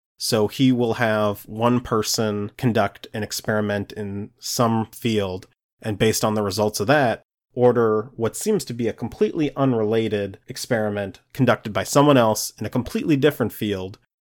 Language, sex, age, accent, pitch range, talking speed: English, male, 30-49, American, 105-125 Hz, 155 wpm